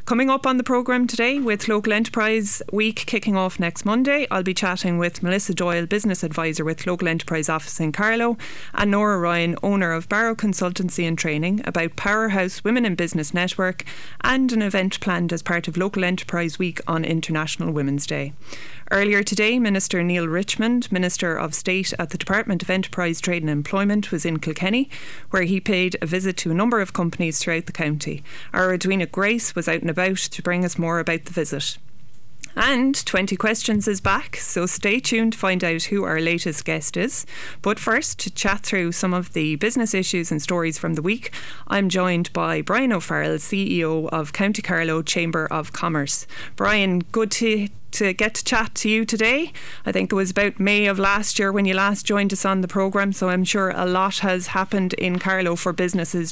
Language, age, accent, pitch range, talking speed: English, 30-49, Irish, 170-205 Hz, 195 wpm